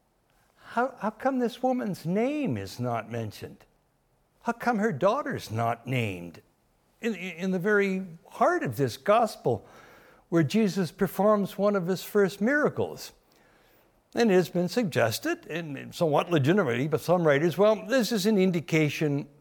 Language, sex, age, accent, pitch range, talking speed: English, male, 60-79, American, 135-200 Hz, 145 wpm